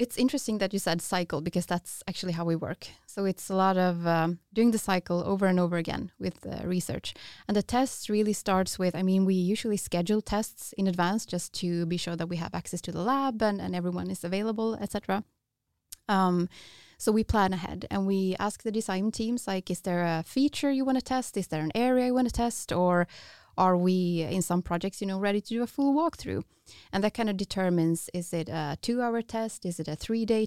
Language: English